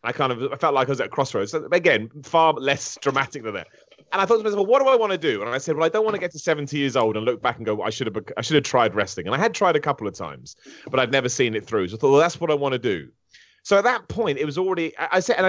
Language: English